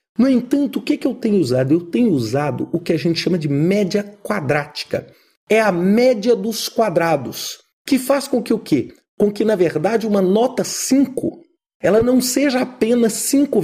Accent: Brazilian